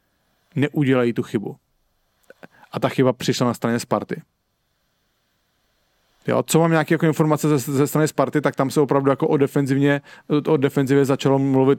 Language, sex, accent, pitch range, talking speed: English, male, Czech, 125-155 Hz, 150 wpm